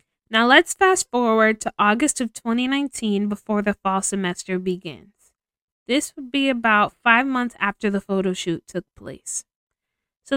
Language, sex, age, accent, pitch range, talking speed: English, female, 20-39, American, 200-250 Hz, 150 wpm